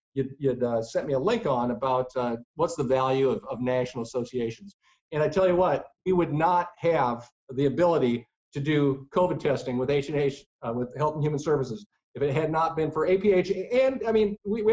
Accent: American